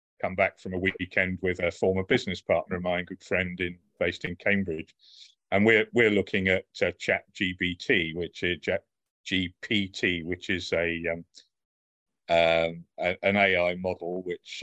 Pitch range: 90-105 Hz